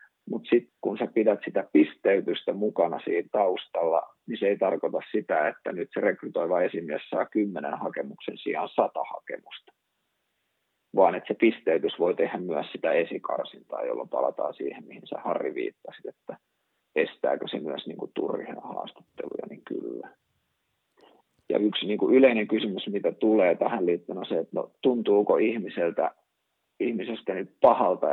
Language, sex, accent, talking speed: Finnish, male, native, 145 wpm